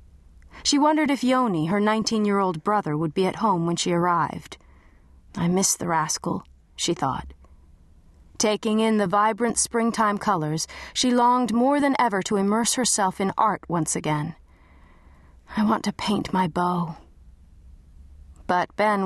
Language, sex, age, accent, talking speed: English, female, 30-49, American, 150 wpm